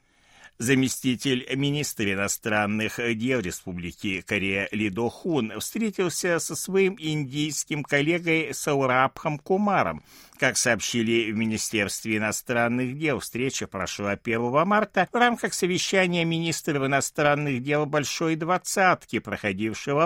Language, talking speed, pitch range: Russian, 105 wpm, 105-165 Hz